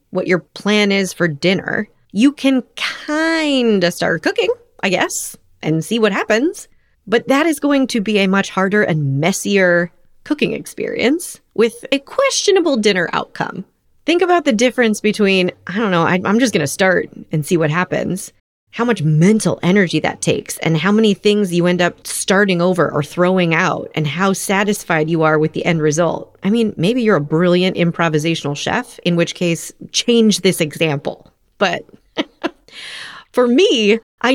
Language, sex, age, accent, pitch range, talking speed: English, female, 30-49, American, 175-250 Hz, 170 wpm